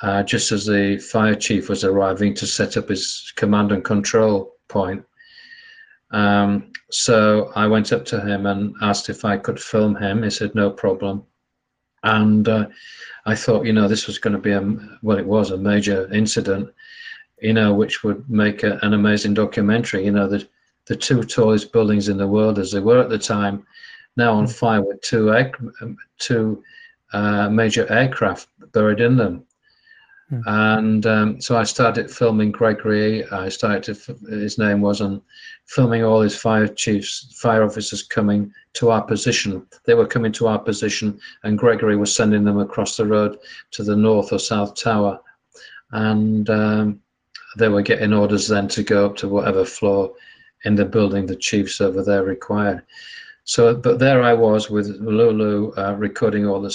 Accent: British